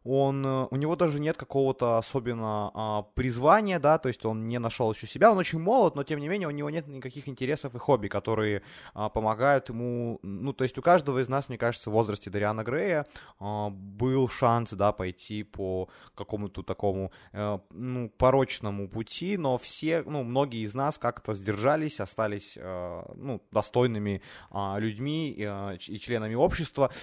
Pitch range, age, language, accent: 105-135 Hz, 20-39, Ukrainian, native